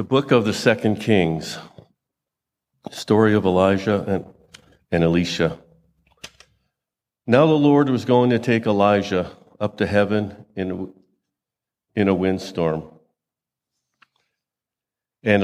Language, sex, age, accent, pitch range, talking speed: English, male, 50-69, American, 95-110 Hz, 110 wpm